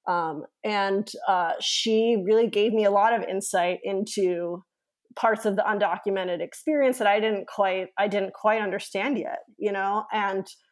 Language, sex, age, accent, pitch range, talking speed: English, female, 20-39, American, 195-235 Hz, 160 wpm